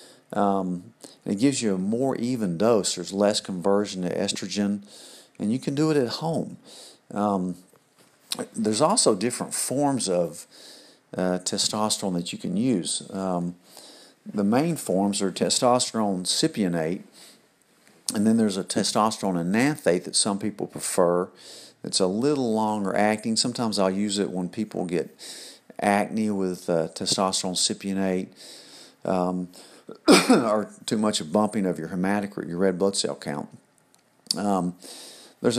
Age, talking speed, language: 50-69, 135 wpm, English